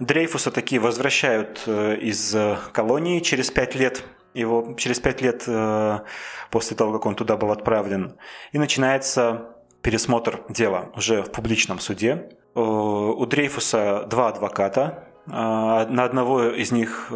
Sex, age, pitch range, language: male, 20-39, 105-130 Hz, Russian